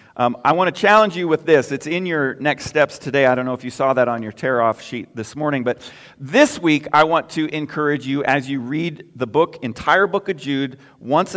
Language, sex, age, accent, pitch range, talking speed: English, male, 40-59, American, 120-155 Hz, 240 wpm